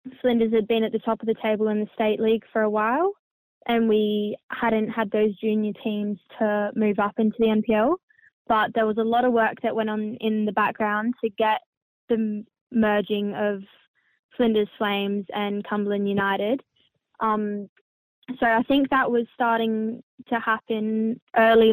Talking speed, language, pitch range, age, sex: 170 wpm, English, 210-235 Hz, 10-29, female